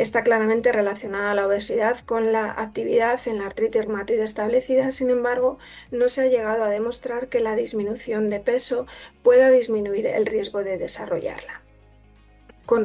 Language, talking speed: Spanish, 155 wpm